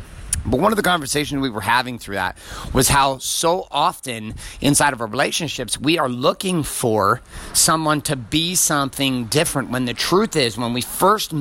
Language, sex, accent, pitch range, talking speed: English, male, American, 115-155 Hz, 180 wpm